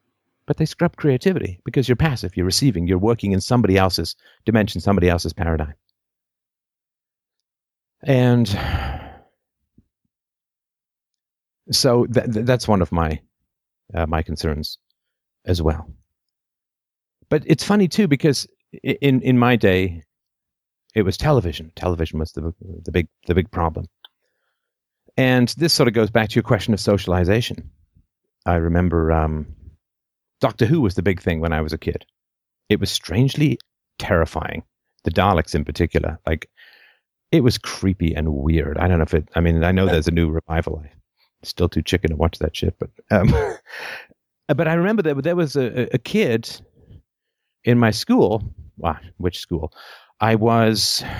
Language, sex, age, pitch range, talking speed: English, male, 50-69, 85-120 Hz, 150 wpm